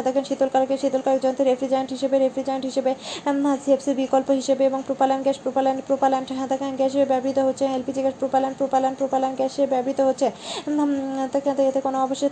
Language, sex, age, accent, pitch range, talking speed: Bengali, female, 20-39, native, 265-275 Hz, 95 wpm